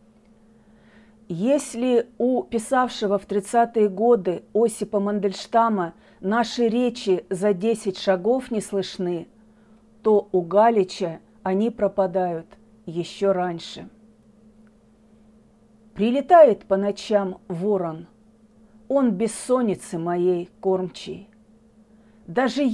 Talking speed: 80 wpm